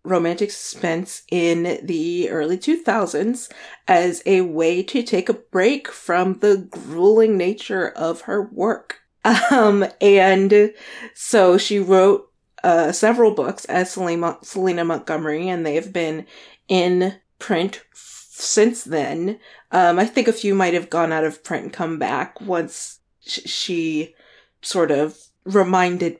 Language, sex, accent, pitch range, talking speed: English, female, American, 175-230 Hz, 135 wpm